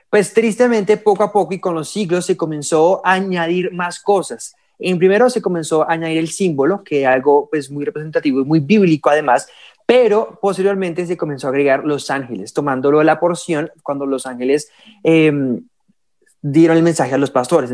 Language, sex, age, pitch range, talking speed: Spanish, male, 20-39, 145-180 Hz, 185 wpm